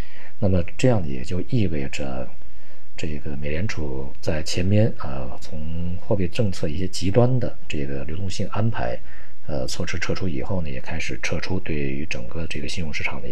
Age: 50-69